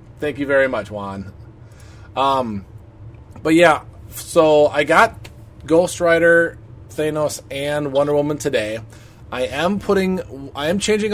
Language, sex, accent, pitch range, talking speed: English, male, American, 110-150 Hz, 130 wpm